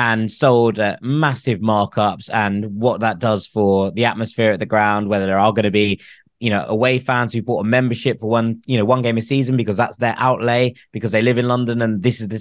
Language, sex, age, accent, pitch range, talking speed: English, male, 20-39, British, 105-130 Hz, 240 wpm